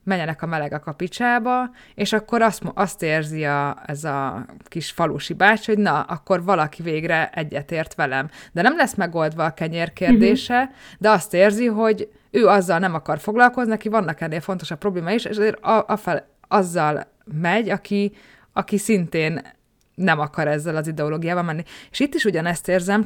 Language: Hungarian